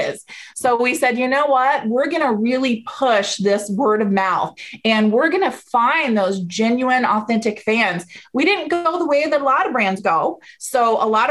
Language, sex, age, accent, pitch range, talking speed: English, female, 30-49, American, 220-280 Hz, 200 wpm